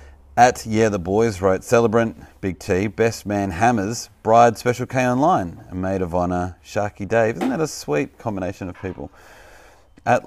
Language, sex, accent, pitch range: English, male, Australian, 90-120 Hz